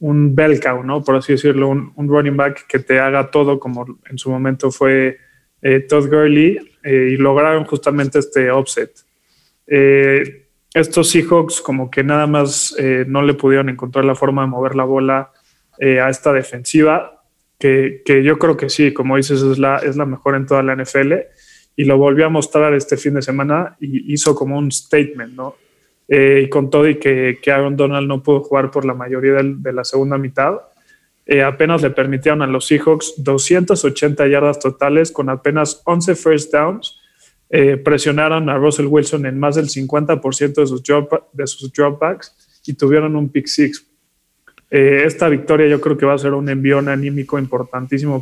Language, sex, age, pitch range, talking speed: Spanish, male, 20-39, 135-150 Hz, 185 wpm